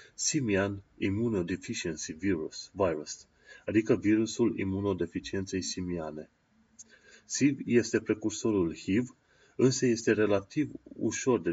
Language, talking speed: Romanian, 90 wpm